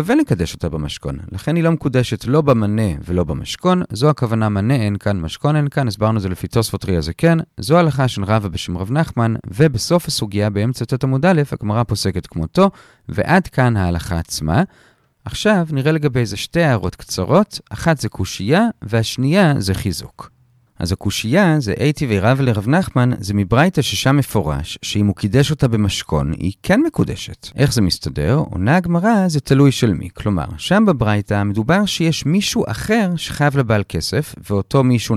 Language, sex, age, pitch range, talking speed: Hebrew, male, 40-59, 105-165 Hz, 170 wpm